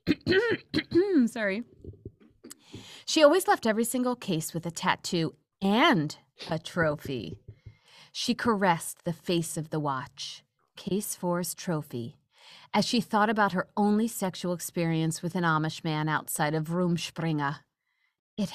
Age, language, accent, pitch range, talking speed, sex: 40-59, English, American, 165-235 Hz, 125 wpm, female